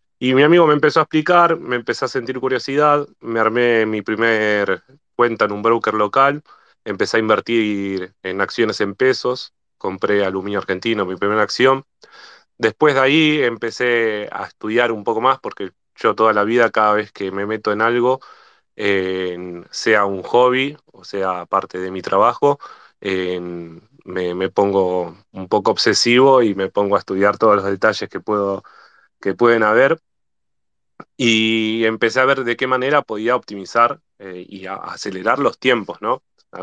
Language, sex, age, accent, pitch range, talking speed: Spanish, male, 20-39, Argentinian, 100-125 Hz, 165 wpm